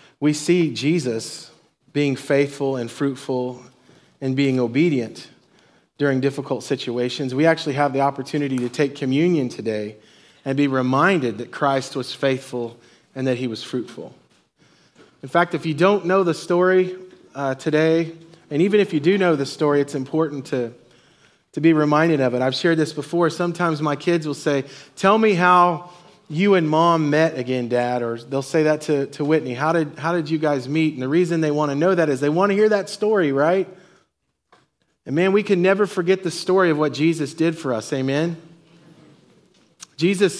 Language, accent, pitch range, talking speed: English, American, 140-175 Hz, 185 wpm